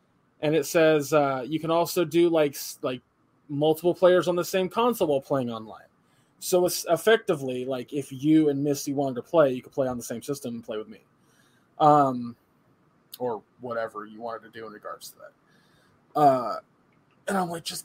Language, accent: English, American